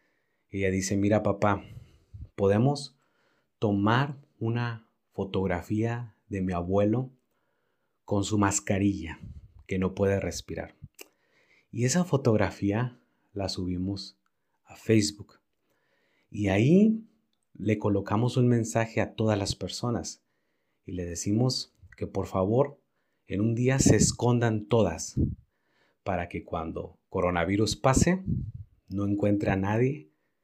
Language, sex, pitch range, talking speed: Spanish, male, 90-110 Hz, 110 wpm